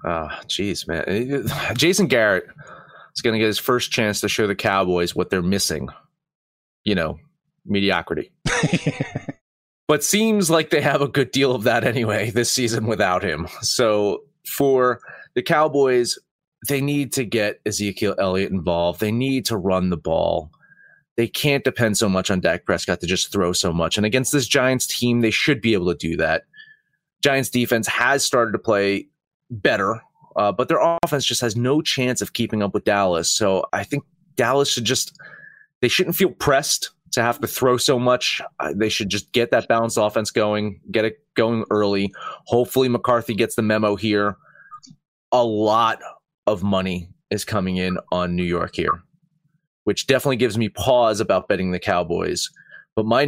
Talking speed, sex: 175 wpm, male